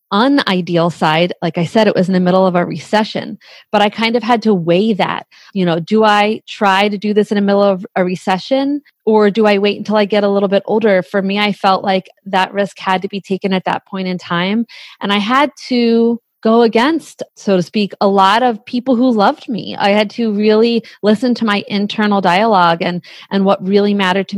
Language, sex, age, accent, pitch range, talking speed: English, female, 30-49, American, 185-230 Hz, 230 wpm